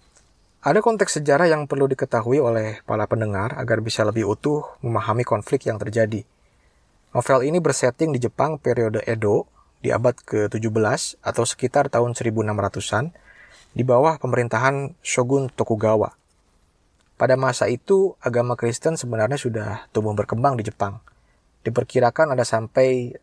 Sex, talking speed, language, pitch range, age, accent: male, 130 wpm, Indonesian, 110-130 Hz, 20-39, native